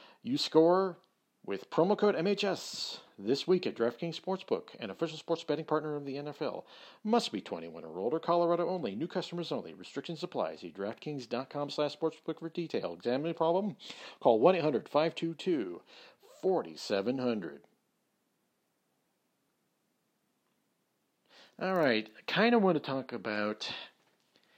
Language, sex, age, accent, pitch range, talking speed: English, male, 40-59, American, 105-160 Hz, 120 wpm